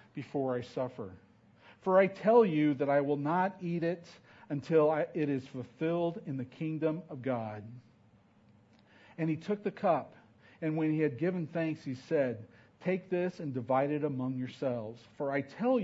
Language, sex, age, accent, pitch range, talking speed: English, male, 50-69, American, 120-165 Hz, 175 wpm